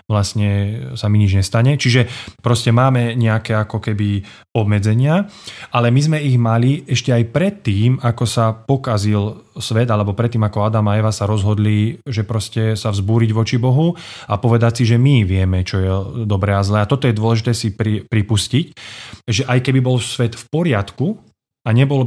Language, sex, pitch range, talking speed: Slovak, male, 105-125 Hz, 175 wpm